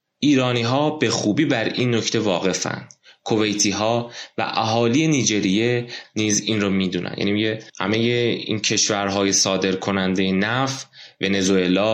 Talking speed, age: 110 wpm, 20-39